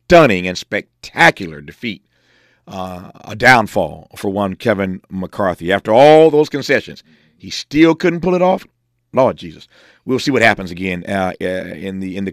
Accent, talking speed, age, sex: American, 160 wpm, 50-69, male